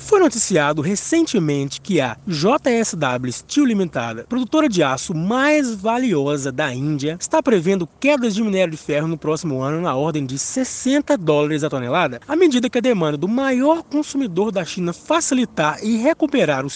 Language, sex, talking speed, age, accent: Portuguese, male, 165 wpm, 20-39, Brazilian